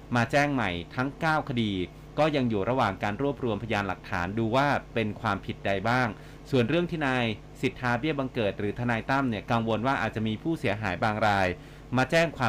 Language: Thai